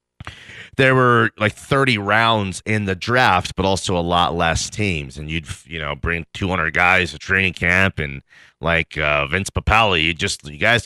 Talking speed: 180 wpm